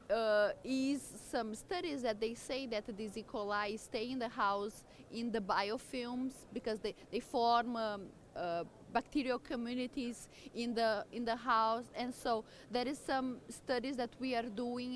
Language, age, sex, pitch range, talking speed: English, 20-39, female, 220-260 Hz, 165 wpm